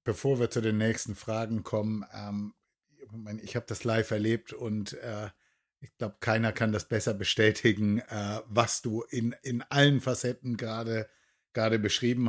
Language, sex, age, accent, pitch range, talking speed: German, male, 50-69, German, 105-125 Hz, 155 wpm